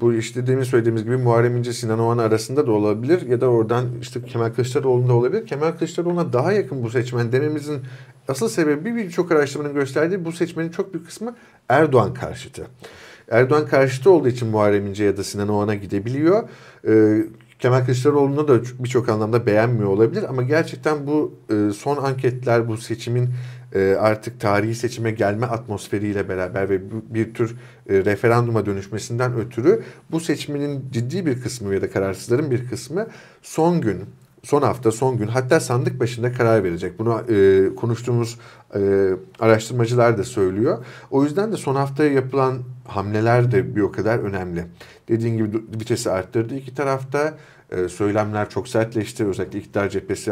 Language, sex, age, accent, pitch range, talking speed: Turkish, male, 50-69, native, 105-135 Hz, 150 wpm